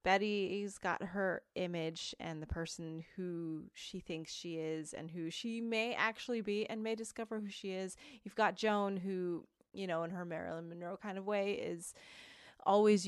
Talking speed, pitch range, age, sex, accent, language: 180 wpm, 175-235 Hz, 20-39, female, American, English